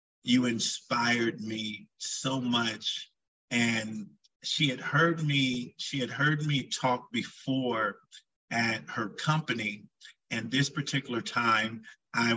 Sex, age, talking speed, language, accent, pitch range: male, 50-69, 115 wpm, English, American, 110-125 Hz